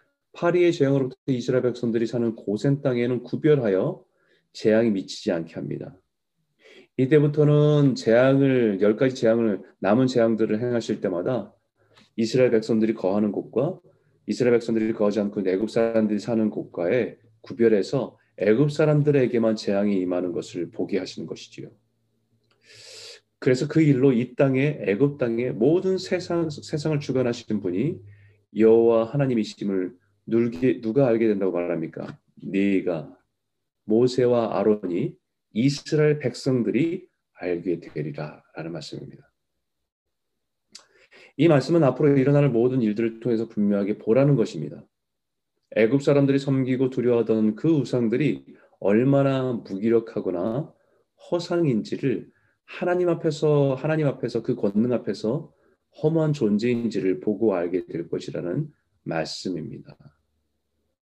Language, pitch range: Korean, 105-140 Hz